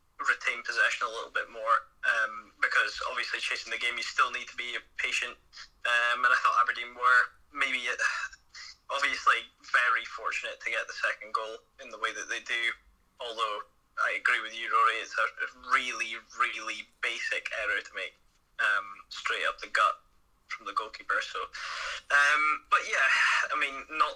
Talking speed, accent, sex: 170 wpm, British, male